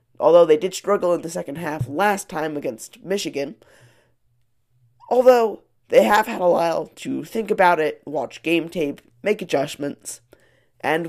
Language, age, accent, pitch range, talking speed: English, 20-39, American, 120-205 Hz, 150 wpm